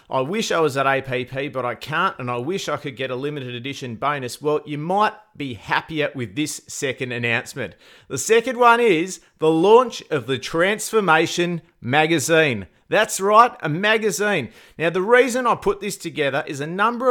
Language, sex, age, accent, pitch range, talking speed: English, male, 40-59, Australian, 135-185 Hz, 180 wpm